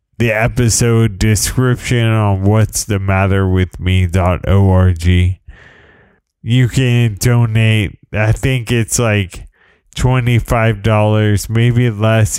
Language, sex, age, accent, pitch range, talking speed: English, male, 20-39, American, 105-120 Hz, 90 wpm